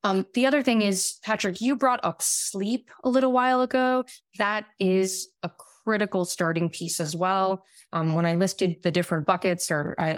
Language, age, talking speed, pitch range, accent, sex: English, 20-39, 185 wpm, 165-220 Hz, American, female